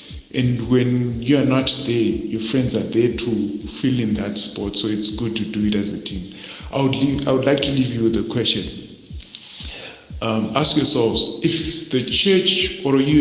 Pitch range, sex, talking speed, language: 105-125 Hz, male, 200 wpm, English